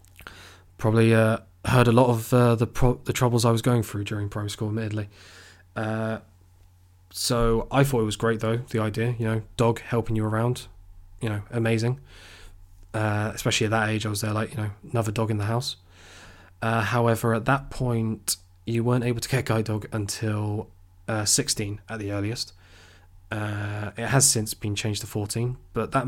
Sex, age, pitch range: male, 20-39, 95-115 Hz